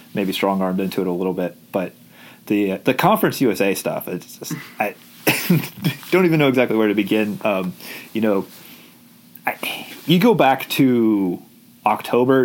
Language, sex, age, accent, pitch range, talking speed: English, male, 30-49, American, 95-125 Hz, 160 wpm